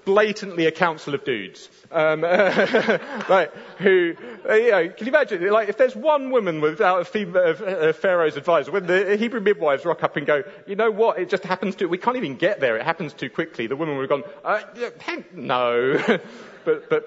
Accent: British